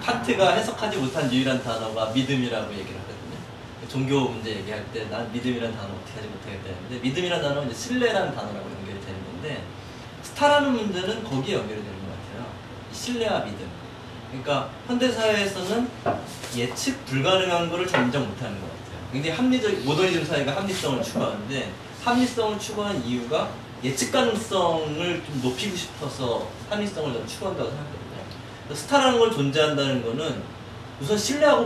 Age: 30-49